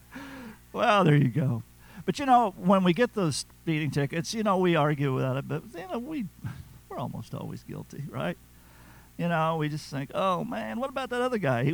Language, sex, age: English, male, 50-69